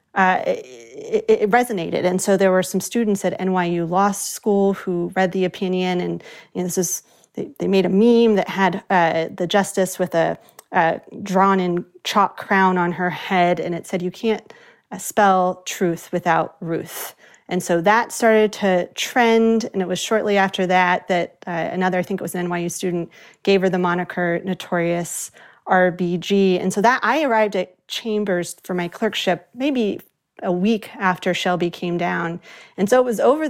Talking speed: 175 wpm